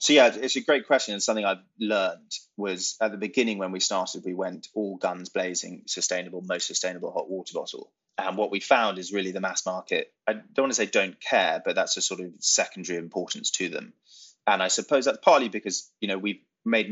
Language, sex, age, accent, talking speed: English, male, 20-39, British, 225 wpm